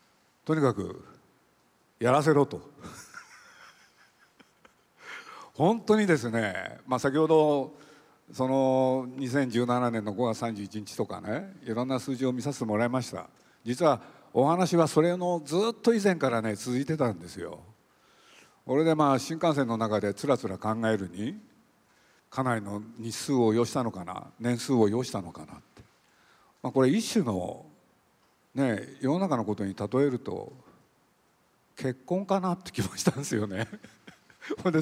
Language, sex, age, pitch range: Japanese, male, 50-69, 110-140 Hz